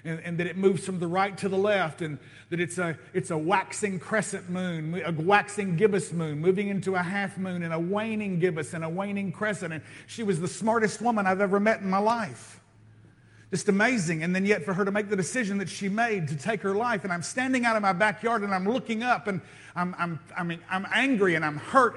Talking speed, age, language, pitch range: 240 wpm, 50-69, English, 180-225 Hz